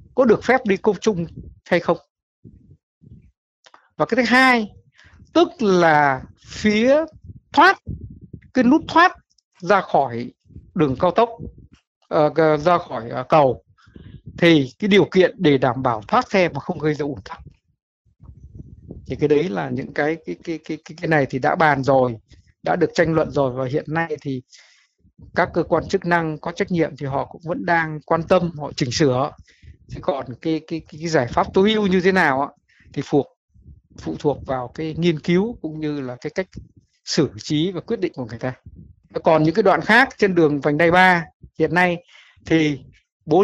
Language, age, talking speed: Vietnamese, 60-79, 185 wpm